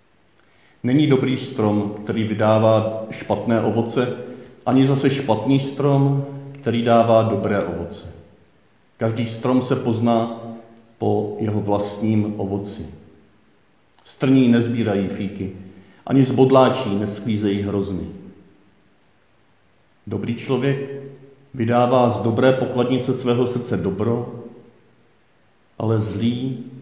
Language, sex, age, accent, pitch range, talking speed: Czech, male, 50-69, native, 105-125 Hz, 90 wpm